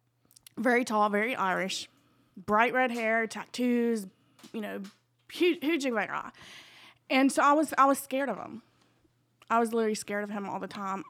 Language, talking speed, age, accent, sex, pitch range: English, 170 wpm, 20-39, American, female, 185-230 Hz